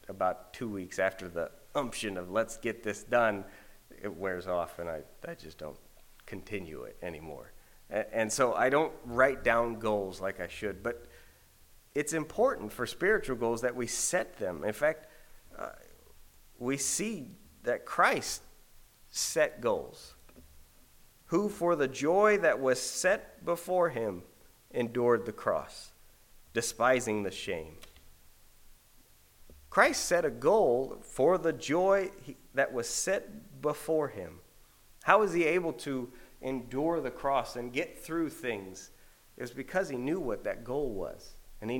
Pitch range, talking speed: 95-150 Hz, 145 wpm